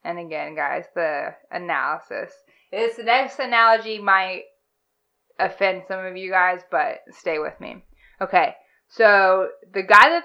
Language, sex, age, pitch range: English, female, 20-39, 190-235 Hz